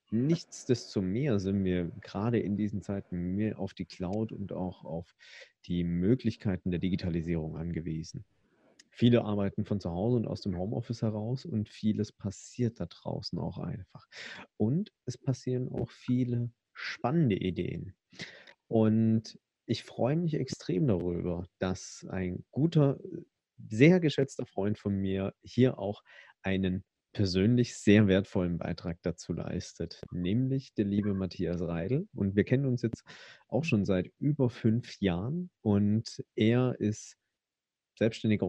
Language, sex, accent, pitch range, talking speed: German, male, German, 95-125 Hz, 135 wpm